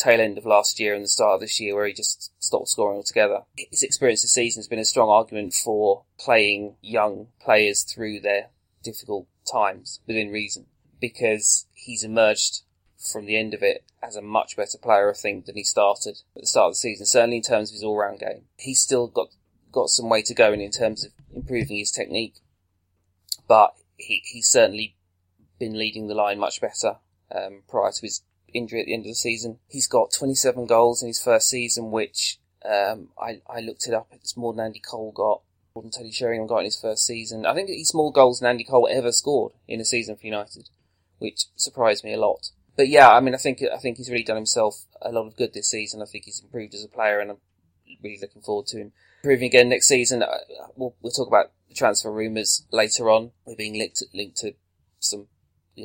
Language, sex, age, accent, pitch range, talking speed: English, male, 20-39, British, 100-120 Hz, 220 wpm